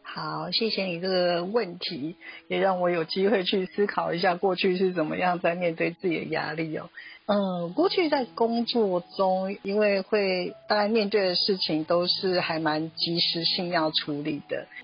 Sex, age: female, 50-69